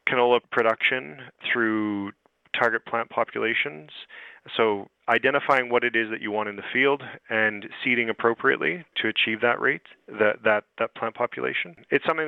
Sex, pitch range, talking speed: male, 105-120 Hz, 145 wpm